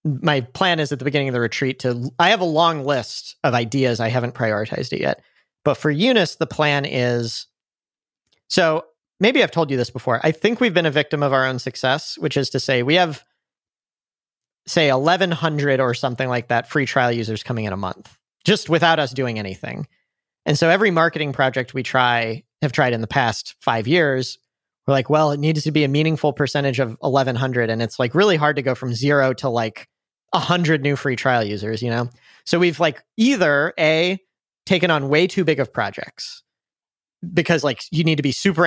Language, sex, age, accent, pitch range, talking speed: English, male, 40-59, American, 125-165 Hz, 205 wpm